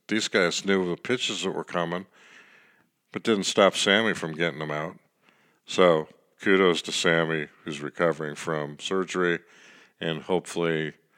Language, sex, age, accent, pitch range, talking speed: English, male, 50-69, American, 75-90 Hz, 140 wpm